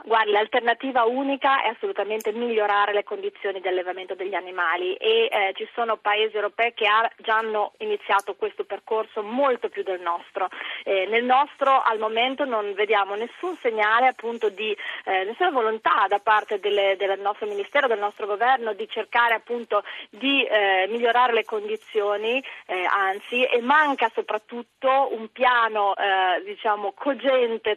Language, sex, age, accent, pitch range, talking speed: Italian, female, 30-49, native, 210-255 Hz, 150 wpm